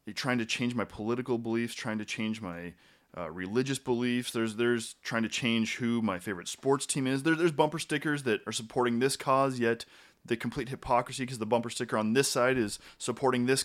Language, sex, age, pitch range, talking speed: English, male, 20-39, 105-130 Hz, 205 wpm